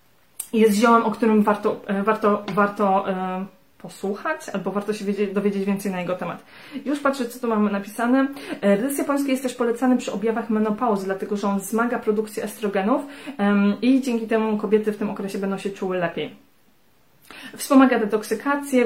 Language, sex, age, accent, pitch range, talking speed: Polish, female, 20-39, native, 195-240 Hz, 155 wpm